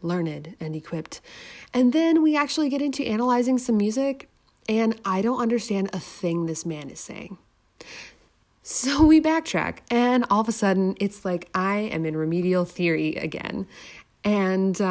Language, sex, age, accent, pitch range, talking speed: English, female, 30-49, American, 170-250 Hz, 155 wpm